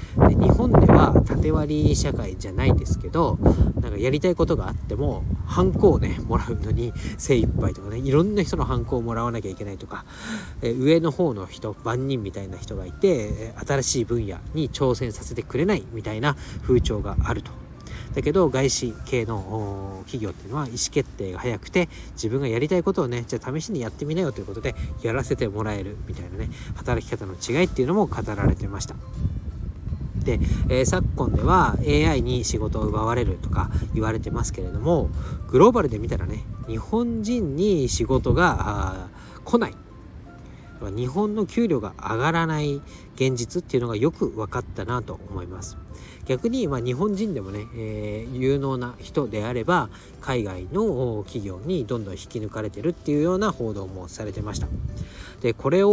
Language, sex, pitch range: Japanese, male, 100-140 Hz